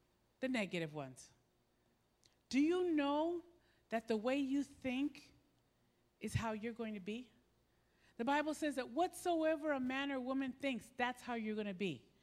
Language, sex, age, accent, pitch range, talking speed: English, female, 50-69, American, 215-305 Hz, 165 wpm